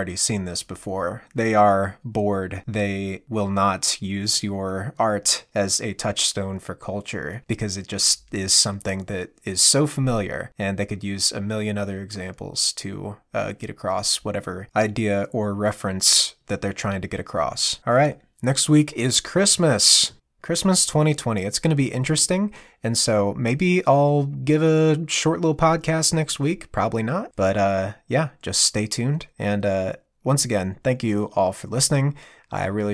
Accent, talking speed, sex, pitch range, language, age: American, 170 wpm, male, 100-135 Hz, English, 20-39